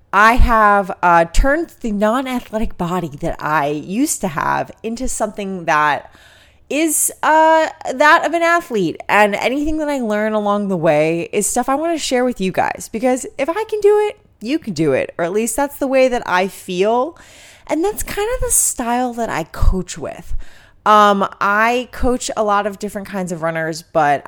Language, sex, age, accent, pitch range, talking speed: English, female, 20-39, American, 170-255 Hz, 195 wpm